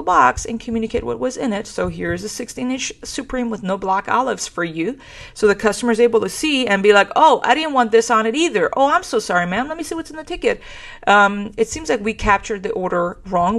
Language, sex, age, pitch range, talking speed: English, female, 40-59, 180-230 Hz, 255 wpm